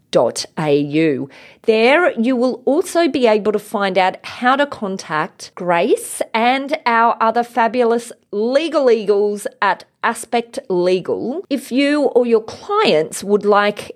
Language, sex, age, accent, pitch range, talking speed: English, female, 30-49, Australian, 175-240 Hz, 135 wpm